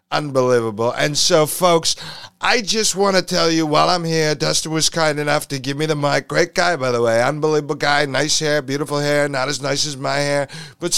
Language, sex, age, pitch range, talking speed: English, male, 50-69, 130-170 Hz, 220 wpm